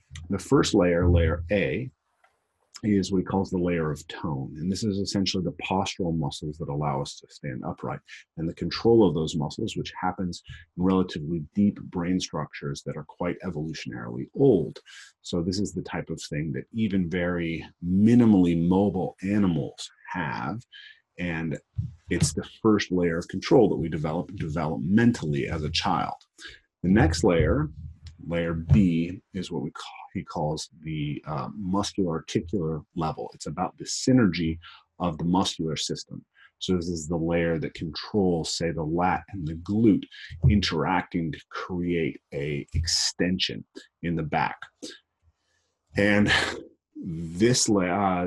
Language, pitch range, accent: English, 80-100 Hz, American